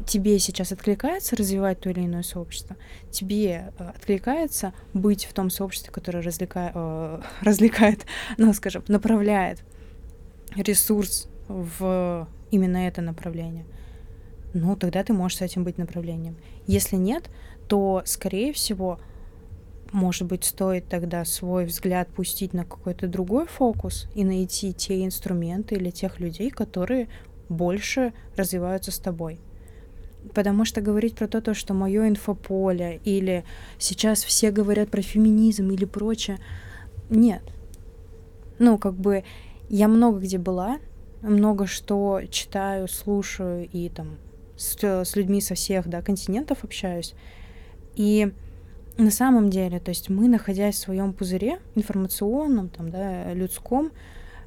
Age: 20-39